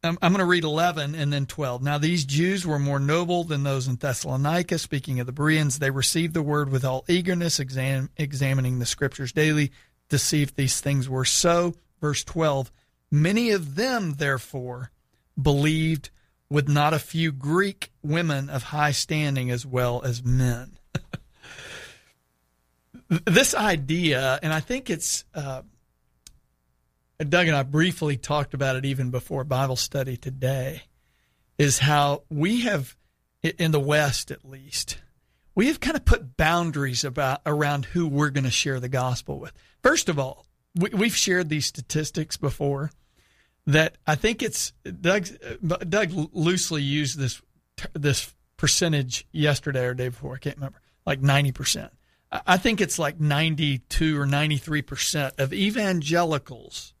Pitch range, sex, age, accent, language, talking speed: 130-165 Hz, male, 40-59, American, English, 145 wpm